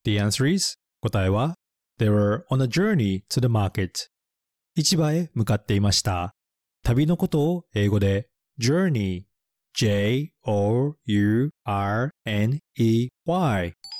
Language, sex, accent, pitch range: Japanese, male, native, 100-150 Hz